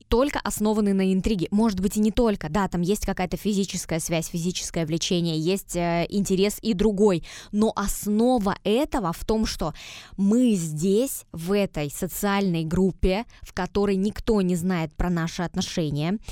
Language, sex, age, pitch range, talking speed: Russian, female, 20-39, 180-220 Hz, 155 wpm